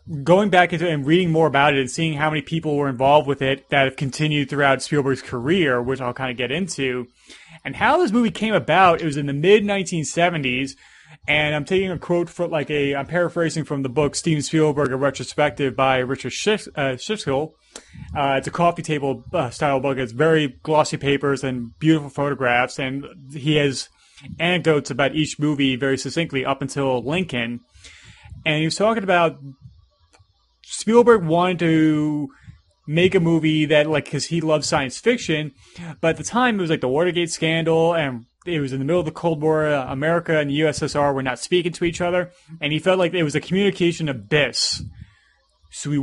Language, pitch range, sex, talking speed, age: English, 135-170 Hz, male, 190 wpm, 30-49